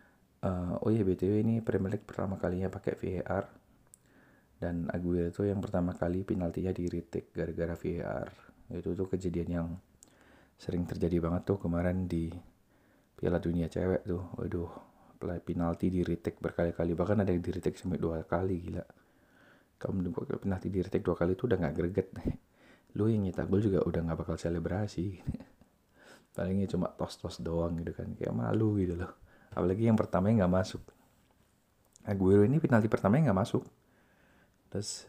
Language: Indonesian